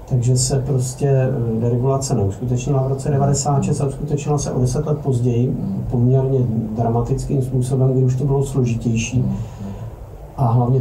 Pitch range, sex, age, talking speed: 125-135 Hz, male, 50-69, 140 wpm